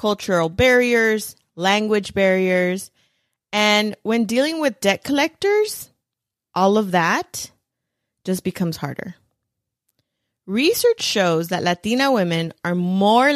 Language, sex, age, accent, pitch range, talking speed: English, female, 30-49, American, 175-235 Hz, 105 wpm